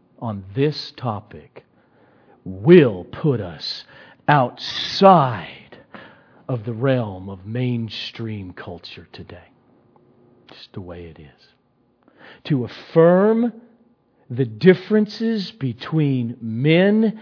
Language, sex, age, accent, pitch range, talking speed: English, male, 50-69, American, 125-185 Hz, 85 wpm